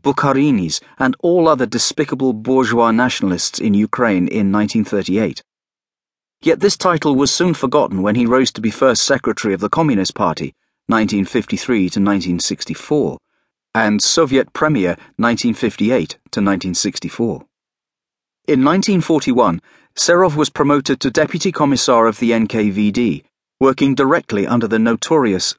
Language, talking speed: English, 120 wpm